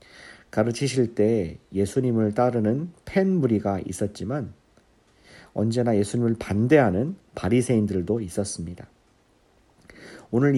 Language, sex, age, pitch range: Korean, male, 50-69, 100-130 Hz